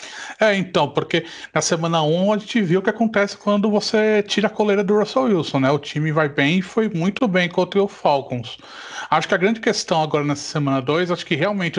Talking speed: 230 wpm